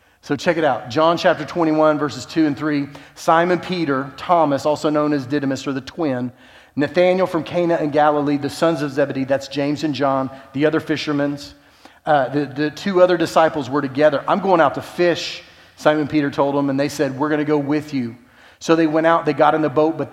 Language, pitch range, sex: English, 135-160 Hz, male